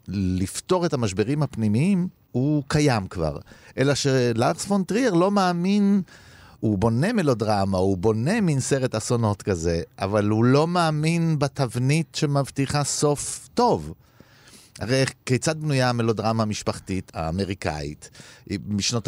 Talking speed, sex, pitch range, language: 115 wpm, male, 105-150 Hz, Hebrew